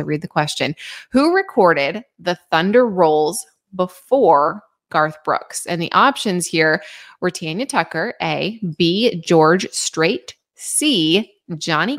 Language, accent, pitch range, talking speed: English, American, 165-235 Hz, 120 wpm